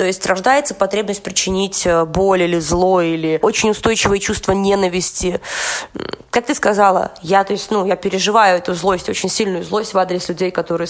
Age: 20-39